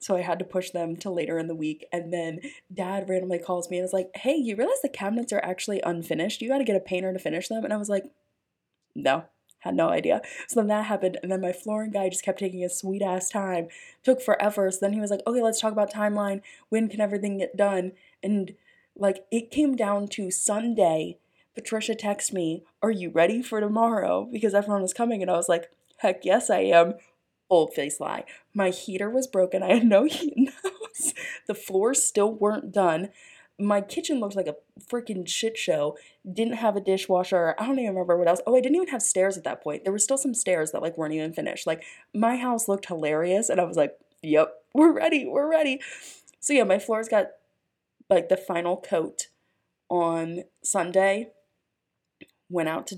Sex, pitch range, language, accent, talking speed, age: female, 175-225 Hz, English, American, 215 wpm, 20-39